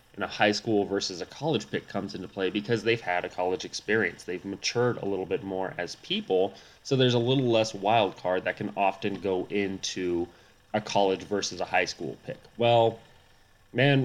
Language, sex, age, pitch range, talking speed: English, male, 20-39, 100-125 Hz, 195 wpm